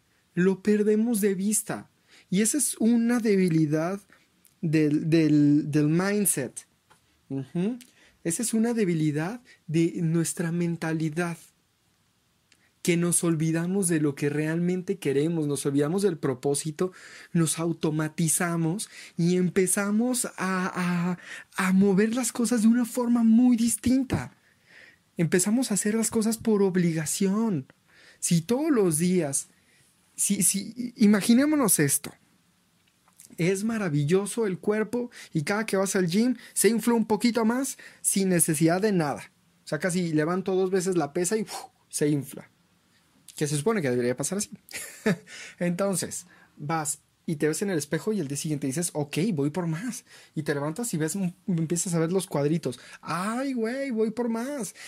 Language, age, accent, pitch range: Spanish, 30-49, Mexican, 160-215 Hz